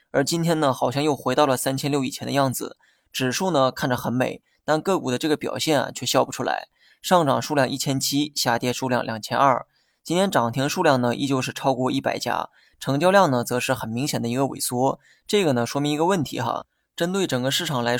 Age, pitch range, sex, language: 20-39, 125-155 Hz, male, Chinese